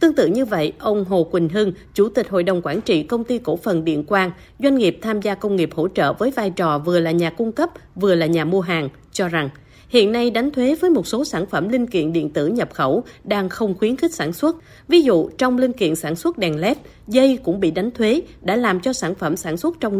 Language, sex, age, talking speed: Vietnamese, female, 20-39, 260 wpm